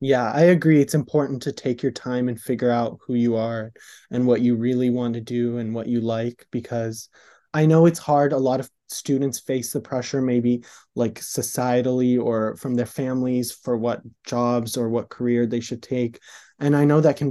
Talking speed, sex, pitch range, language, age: 205 wpm, male, 120-140 Hz, English, 20-39